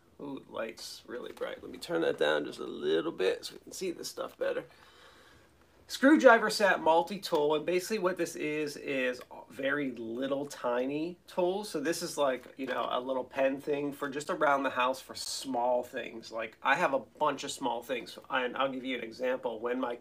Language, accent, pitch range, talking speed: English, American, 125-180 Hz, 200 wpm